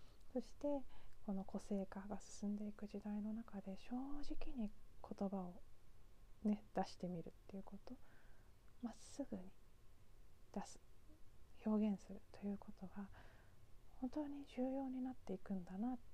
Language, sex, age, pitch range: Japanese, female, 20-39, 180-225 Hz